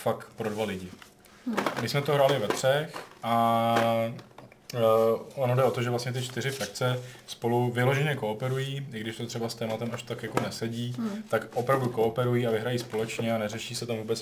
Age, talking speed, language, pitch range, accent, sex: 20-39, 185 wpm, Czech, 110-125 Hz, native, male